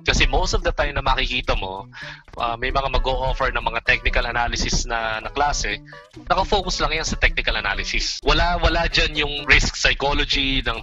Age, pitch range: 20-39, 120-145 Hz